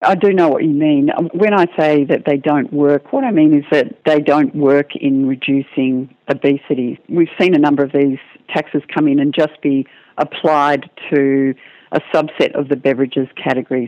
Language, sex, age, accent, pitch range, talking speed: English, female, 50-69, Australian, 135-155 Hz, 190 wpm